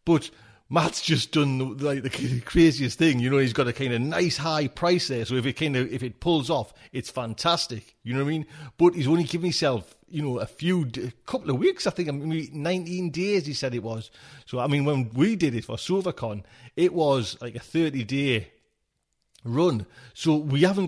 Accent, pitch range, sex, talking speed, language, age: British, 115-150 Hz, male, 215 wpm, English, 40-59